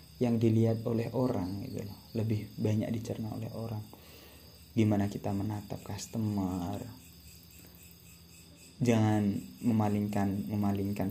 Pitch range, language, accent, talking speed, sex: 95-115 Hz, Indonesian, native, 90 wpm, male